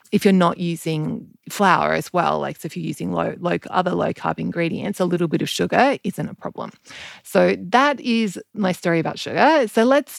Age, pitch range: 30-49, 165-225 Hz